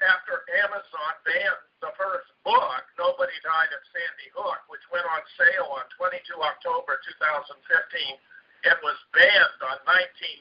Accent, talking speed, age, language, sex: American, 140 wpm, 50-69, English, male